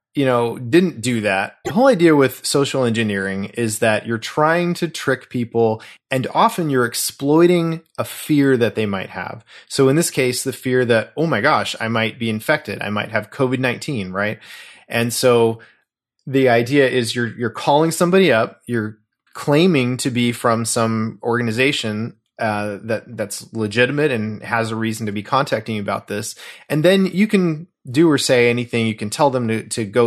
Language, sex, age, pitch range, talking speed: English, male, 20-39, 110-140 Hz, 185 wpm